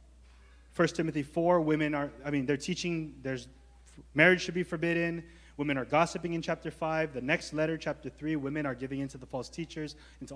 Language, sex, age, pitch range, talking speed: English, male, 20-39, 135-175 Hz, 195 wpm